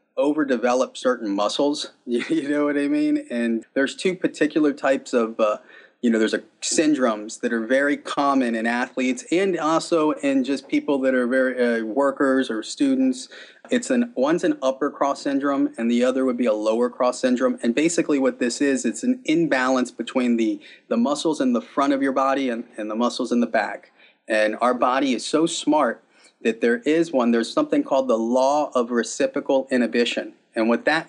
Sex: male